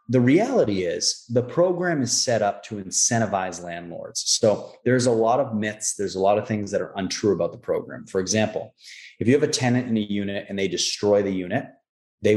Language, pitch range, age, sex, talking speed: English, 95-120 Hz, 30-49, male, 215 wpm